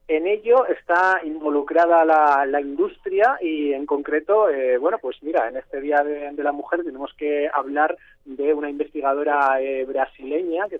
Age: 30-49